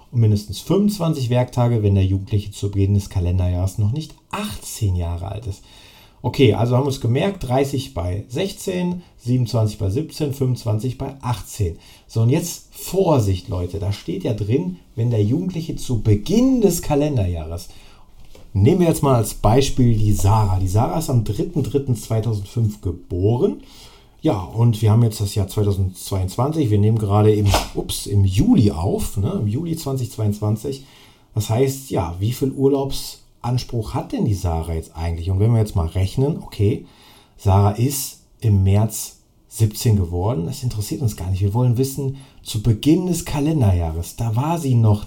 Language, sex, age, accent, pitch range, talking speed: German, male, 40-59, German, 100-135 Hz, 165 wpm